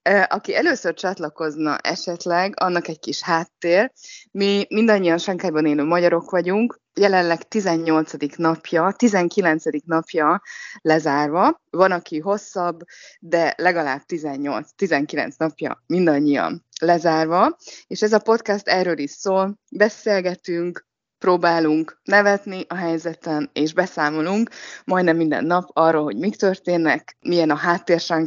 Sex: female